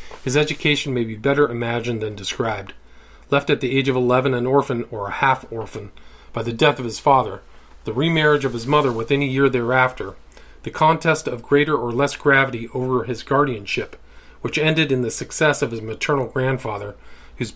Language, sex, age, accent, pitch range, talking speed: English, male, 40-59, American, 115-140 Hz, 185 wpm